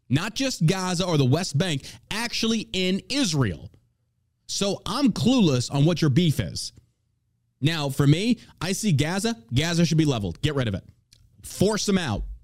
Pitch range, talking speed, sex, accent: 120-165 Hz, 170 wpm, male, American